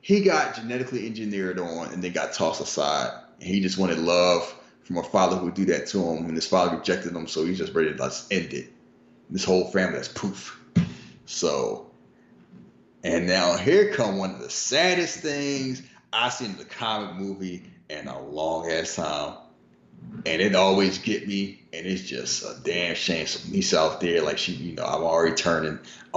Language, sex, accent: English, male, American